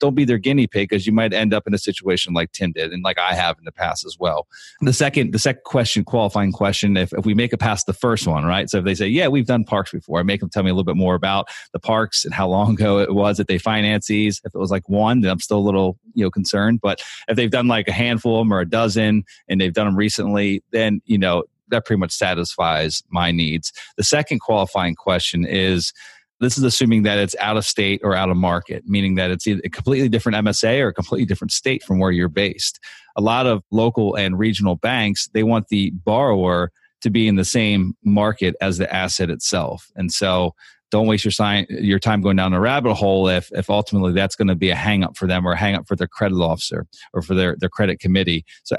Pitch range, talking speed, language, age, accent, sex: 95-110 Hz, 250 wpm, English, 30-49, American, male